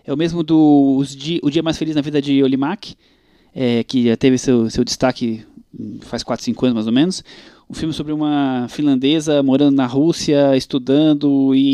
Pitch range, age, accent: 135-185 Hz, 20-39, Brazilian